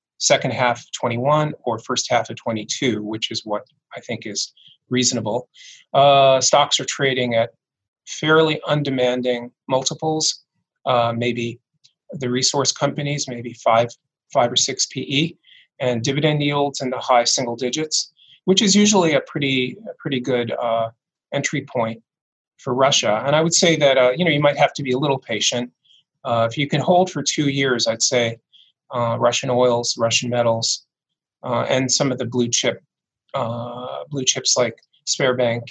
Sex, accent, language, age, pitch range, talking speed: male, American, English, 30-49, 120-155 Hz, 165 wpm